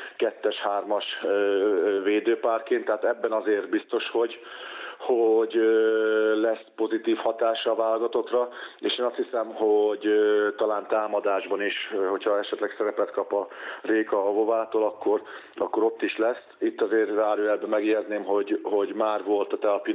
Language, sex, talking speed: Hungarian, male, 125 wpm